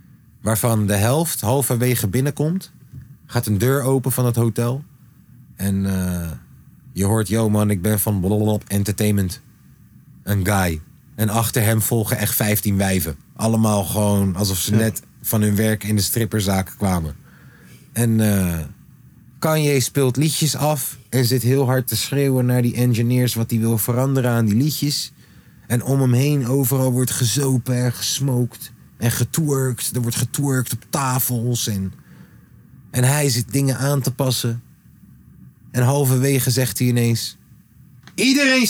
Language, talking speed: Dutch, 145 wpm